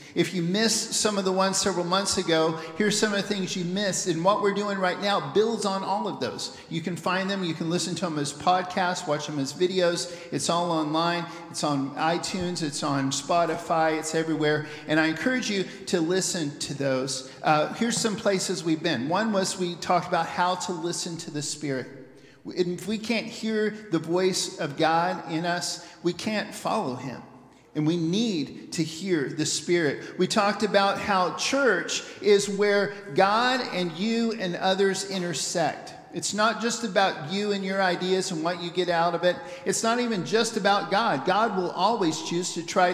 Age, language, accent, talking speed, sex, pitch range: 50-69, English, American, 195 wpm, male, 160-195 Hz